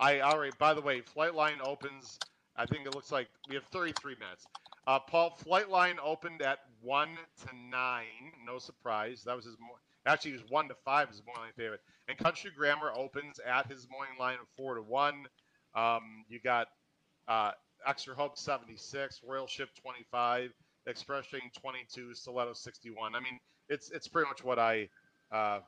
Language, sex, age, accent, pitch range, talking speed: English, male, 40-59, American, 120-150 Hz, 175 wpm